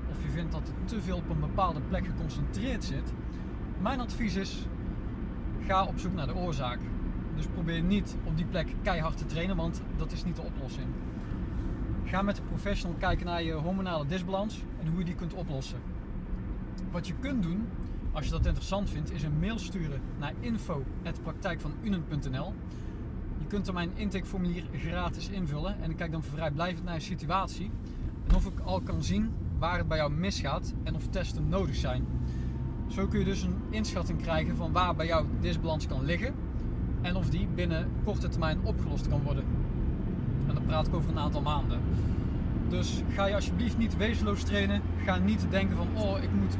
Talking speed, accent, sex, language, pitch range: 185 wpm, Dutch, male, Dutch, 90-125 Hz